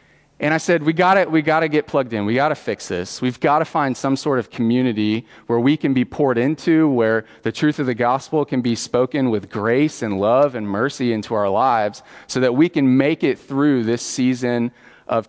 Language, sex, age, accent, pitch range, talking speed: English, male, 30-49, American, 110-145 Hz, 230 wpm